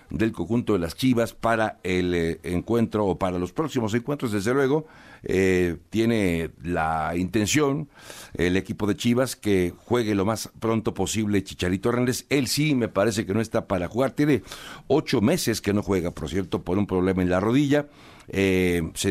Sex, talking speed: male, 175 wpm